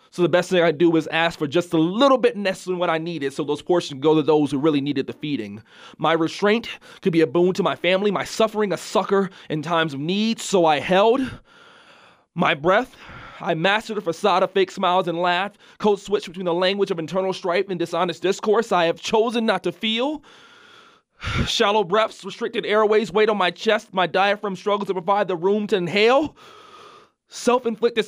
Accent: American